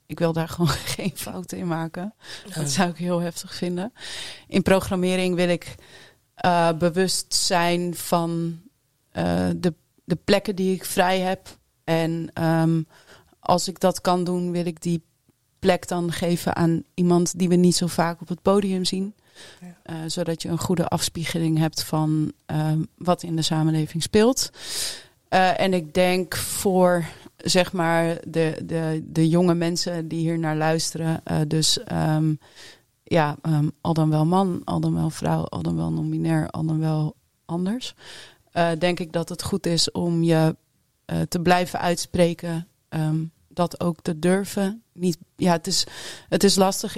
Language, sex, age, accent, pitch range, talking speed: English, female, 30-49, Dutch, 160-180 Hz, 165 wpm